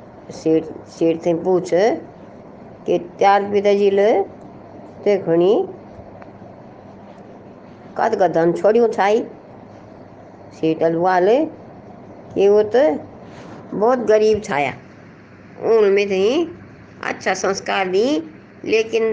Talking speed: 75 wpm